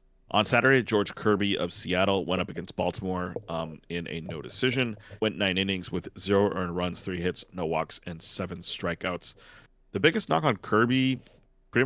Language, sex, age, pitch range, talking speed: English, male, 30-49, 85-105 Hz, 175 wpm